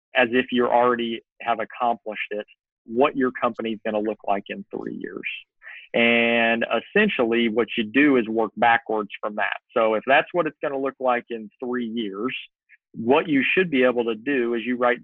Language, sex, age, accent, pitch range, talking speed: English, male, 40-59, American, 115-130 Hz, 190 wpm